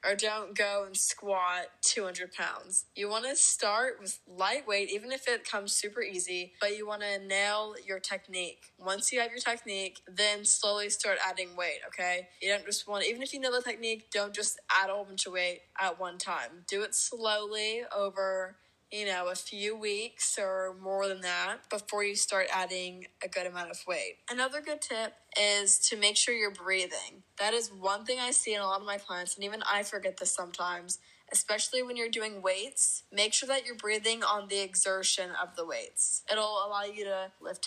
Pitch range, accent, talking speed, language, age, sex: 195-220 Hz, American, 205 wpm, English, 20-39, female